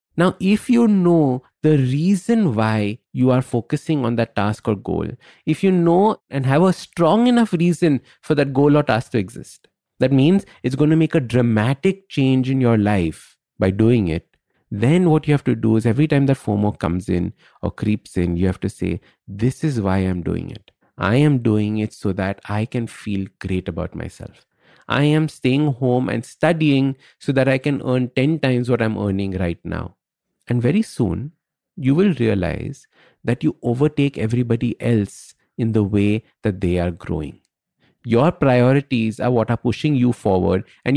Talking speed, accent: 190 wpm, Indian